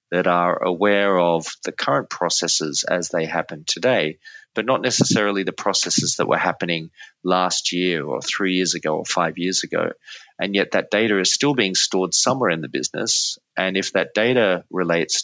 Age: 30-49